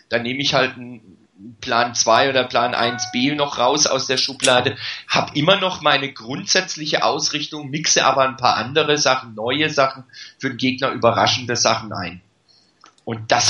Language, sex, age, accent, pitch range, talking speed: German, male, 40-59, German, 110-140 Hz, 165 wpm